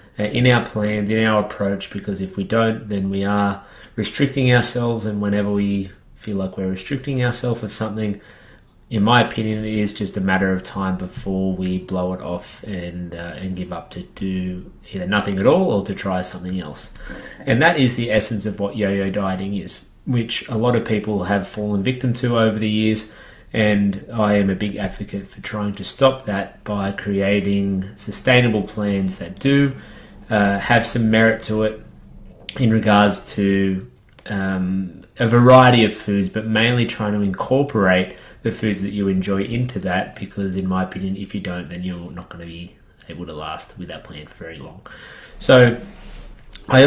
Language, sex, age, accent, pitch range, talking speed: English, male, 30-49, Australian, 95-110 Hz, 185 wpm